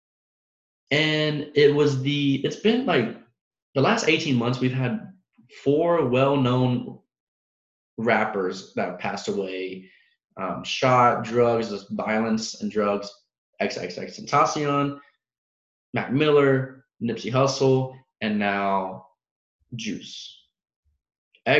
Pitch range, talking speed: 100-130 Hz, 95 wpm